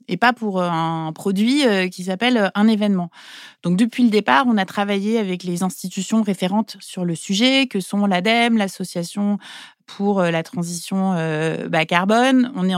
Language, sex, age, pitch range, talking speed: French, female, 30-49, 175-215 Hz, 165 wpm